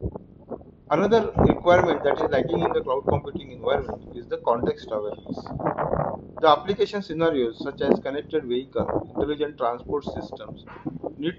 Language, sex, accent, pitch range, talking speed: English, male, Indian, 120-165 Hz, 130 wpm